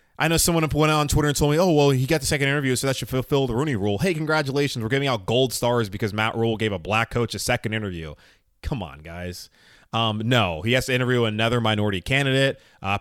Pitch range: 110-140 Hz